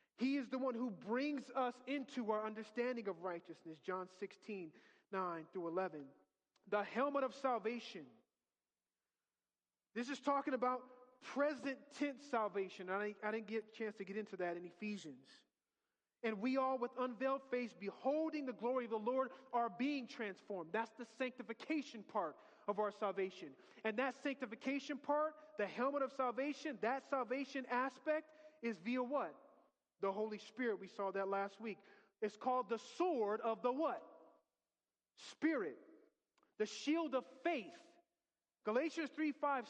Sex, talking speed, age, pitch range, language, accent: male, 150 wpm, 30-49, 210-275 Hz, English, American